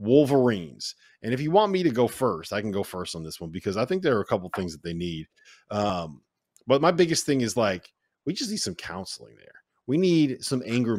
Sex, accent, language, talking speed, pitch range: male, American, English, 240 wpm, 105-145 Hz